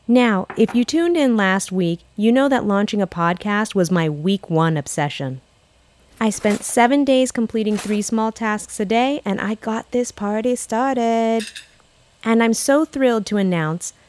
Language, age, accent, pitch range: English, 30-49, American, 175-250 Hz